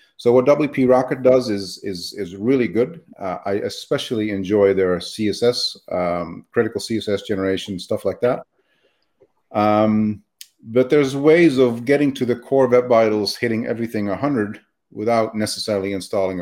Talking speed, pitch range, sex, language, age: 145 wpm, 95-120 Hz, male, English, 40-59